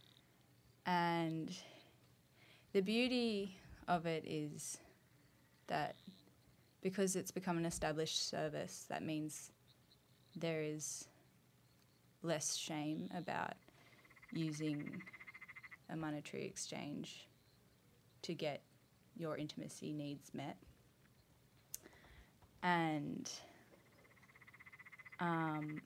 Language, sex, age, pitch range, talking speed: English, female, 20-39, 150-170 Hz, 75 wpm